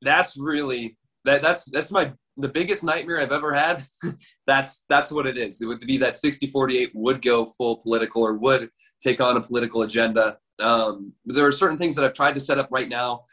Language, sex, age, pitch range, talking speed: English, male, 20-39, 120-140 Hz, 205 wpm